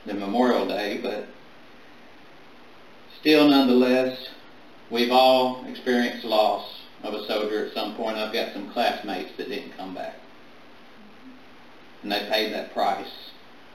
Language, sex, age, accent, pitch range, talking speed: English, male, 50-69, American, 115-135 Hz, 125 wpm